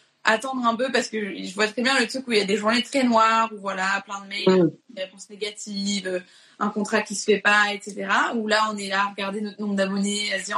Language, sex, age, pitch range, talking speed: French, female, 20-39, 195-235 Hz, 265 wpm